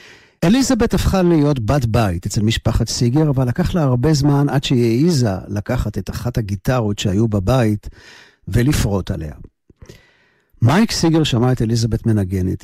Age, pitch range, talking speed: 50-69, 105-140 Hz, 140 wpm